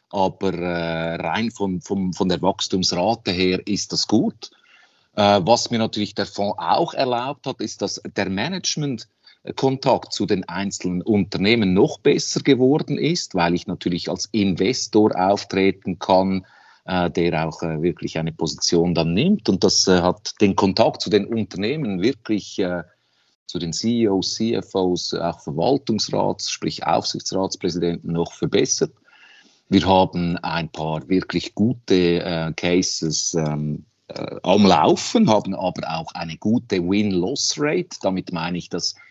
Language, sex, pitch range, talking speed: German, male, 85-105 Hz, 130 wpm